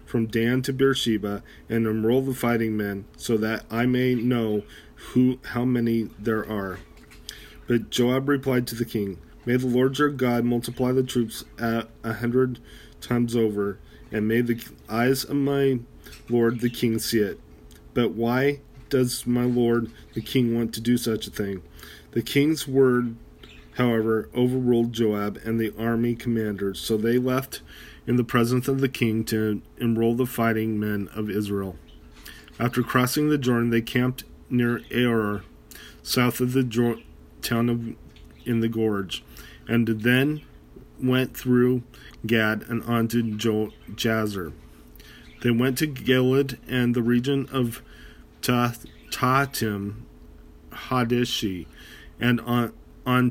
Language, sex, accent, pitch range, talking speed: English, male, American, 105-125 Hz, 145 wpm